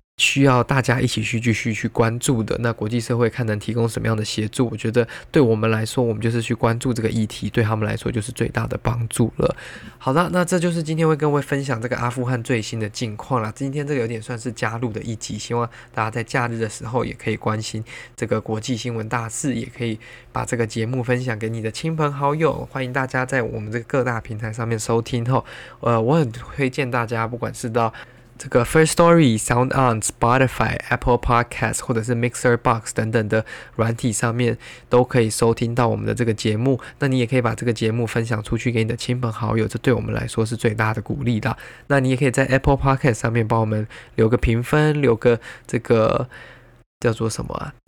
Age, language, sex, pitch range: 20-39, Chinese, male, 115-130 Hz